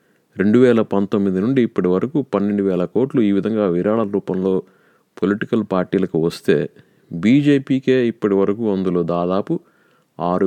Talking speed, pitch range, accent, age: 125 wpm, 90-120 Hz, native, 30-49